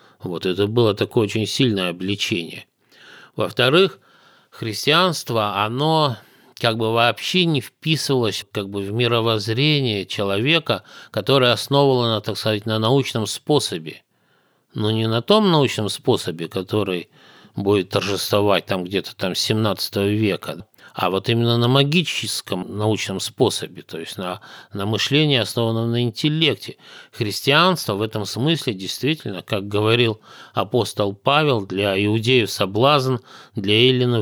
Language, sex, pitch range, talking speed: Russian, male, 100-130 Hz, 120 wpm